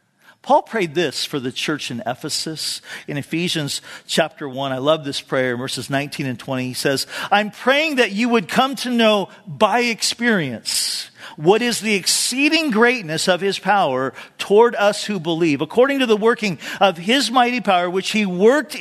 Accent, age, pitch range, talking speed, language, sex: American, 50-69, 185-255 Hz, 175 wpm, English, male